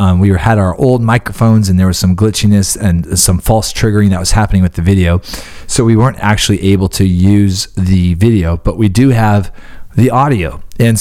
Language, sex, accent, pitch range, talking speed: English, male, American, 95-120 Hz, 200 wpm